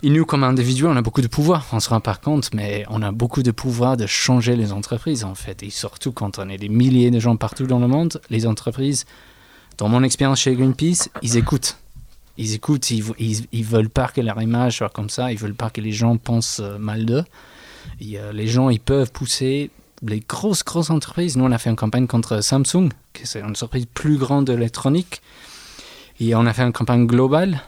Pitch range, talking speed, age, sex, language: 110-135 Hz, 220 wpm, 20-39, male, French